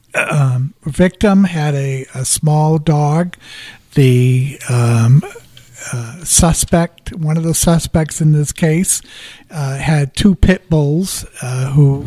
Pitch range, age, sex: 135-160 Hz, 60-79, male